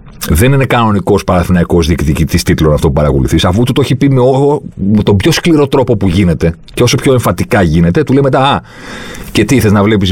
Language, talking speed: Greek, 200 wpm